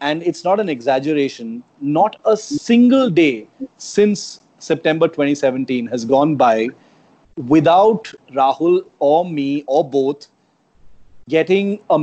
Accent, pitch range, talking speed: native, 145-190 Hz, 115 wpm